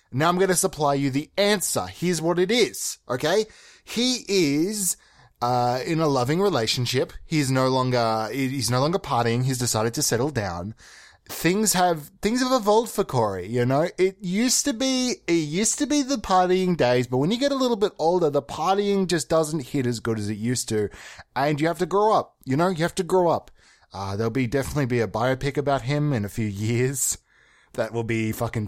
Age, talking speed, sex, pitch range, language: 20-39, 210 wpm, male, 115-190 Hz, English